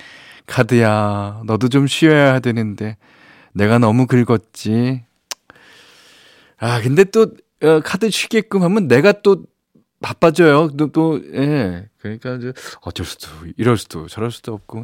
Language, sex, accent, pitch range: Korean, male, native, 100-140 Hz